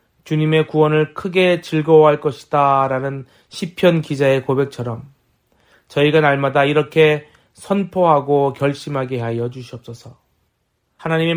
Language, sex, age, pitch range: Korean, male, 30-49, 130-180 Hz